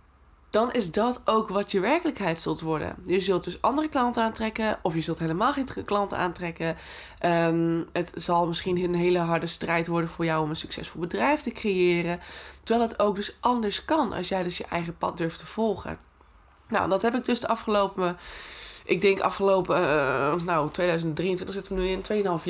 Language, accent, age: Dutch, Dutch, 20-39